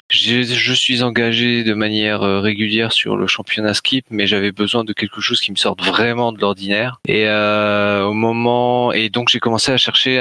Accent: French